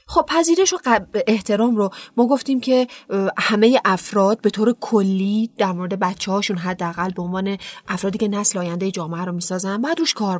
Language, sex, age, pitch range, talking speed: Persian, female, 30-49, 190-235 Hz, 165 wpm